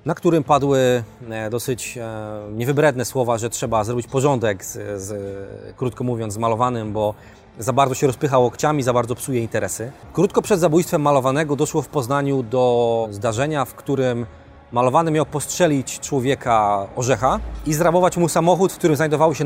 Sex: male